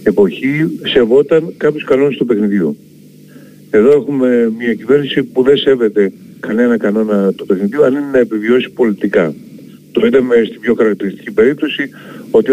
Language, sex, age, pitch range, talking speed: Greek, male, 50-69, 115-150 Hz, 140 wpm